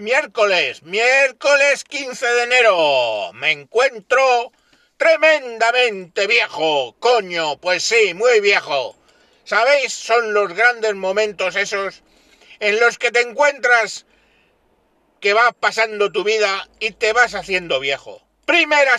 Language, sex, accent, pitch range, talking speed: Spanish, male, Spanish, 200-290 Hz, 115 wpm